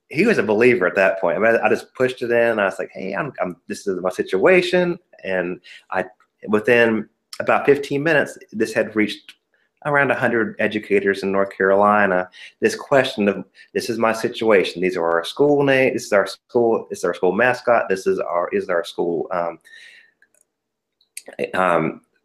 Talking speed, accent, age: 185 wpm, American, 30-49